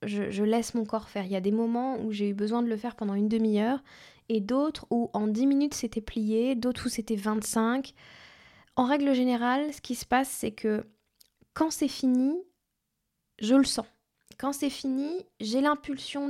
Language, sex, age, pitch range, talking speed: French, female, 10-29, 215-255 Hz, 195 wpm